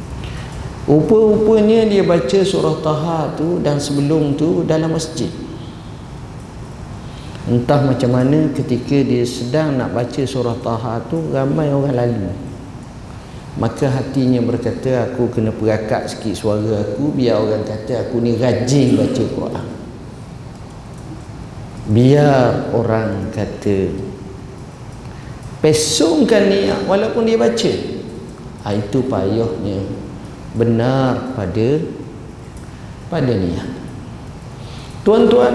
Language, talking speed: Malay, 100 wpm